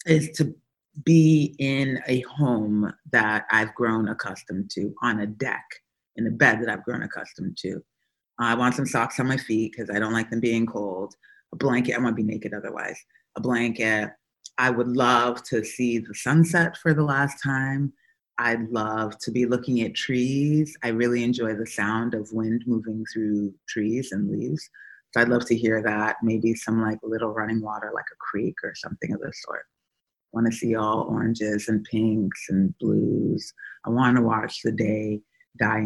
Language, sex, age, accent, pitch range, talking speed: English, female, 30-49, American, 110-125 Hz, 190 wpm